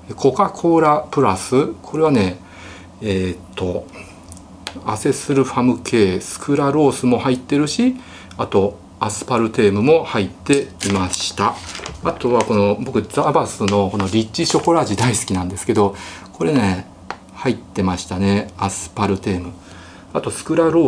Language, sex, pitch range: Japanese, male, 95-130 Hz